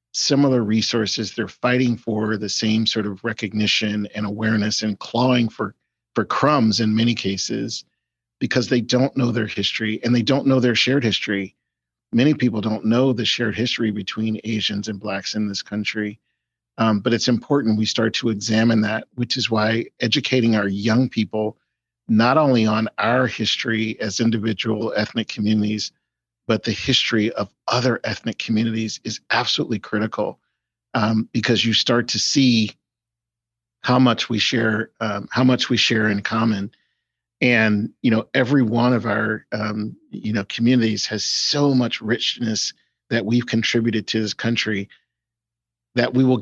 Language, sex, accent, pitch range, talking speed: English, male, American, 110-120 Hz, 160 wpm